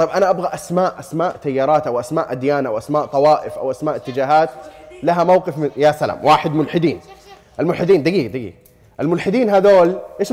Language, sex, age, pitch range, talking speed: Arabic, male, 30-49, 150-220 Hz, 165 wpm